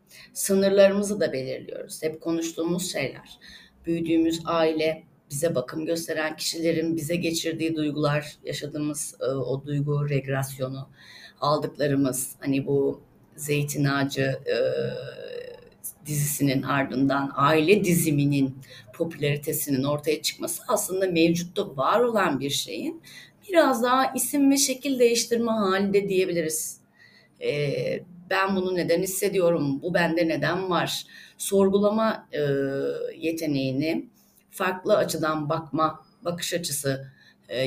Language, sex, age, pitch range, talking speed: Turkish, female, 30-49, 145-195 Hz, 105 wpm